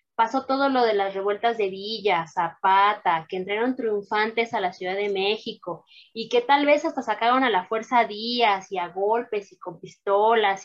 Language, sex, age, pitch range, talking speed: Spanish, female, 20-39, 190-260 Hz, 190 wpm